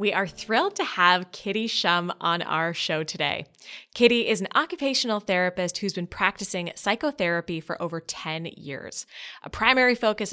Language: English